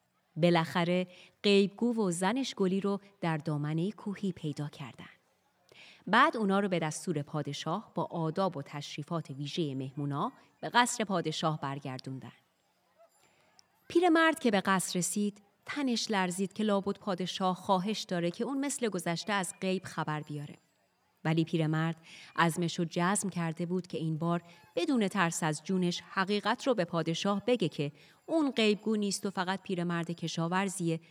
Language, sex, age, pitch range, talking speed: Persian, female, 30-49, 165-205 Hz, 145 wpm